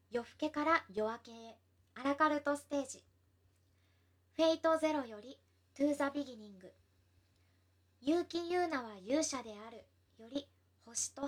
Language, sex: Japanese, male